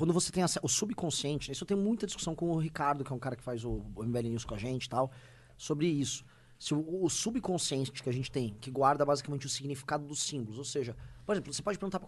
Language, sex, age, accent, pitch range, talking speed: Portuguese, male, 20-39, Brazilian, 130-170 Hz, 260 wpm